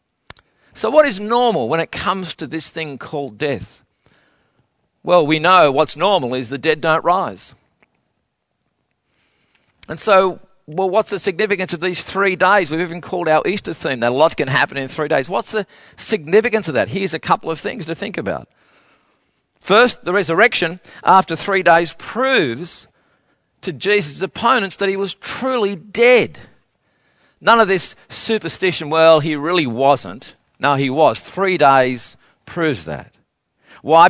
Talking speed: 160 wpm